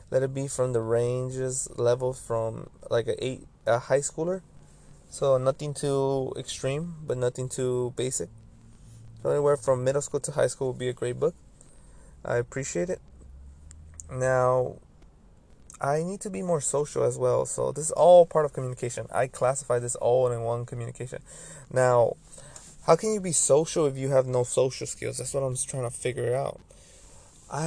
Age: 20-39